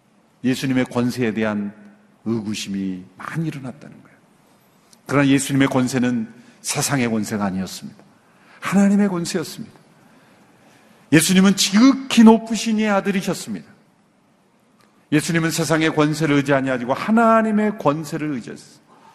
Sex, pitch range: male, 130-195 Hz